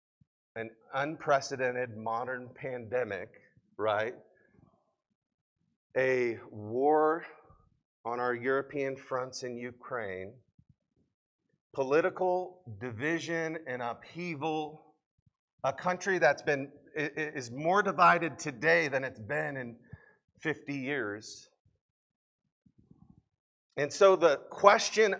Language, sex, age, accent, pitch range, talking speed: English, male, 40-59, American, 125-175 Hz, 85 wpm